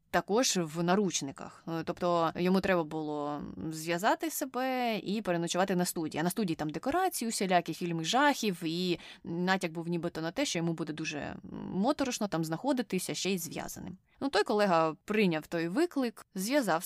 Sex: female